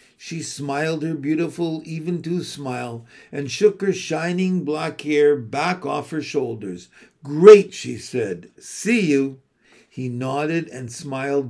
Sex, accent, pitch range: male, American, 140-180 Hz